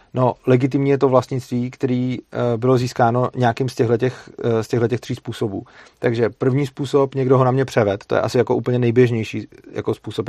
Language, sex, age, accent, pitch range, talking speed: Czech, male, 40-59, native, 110-125 Hz, 175 wpm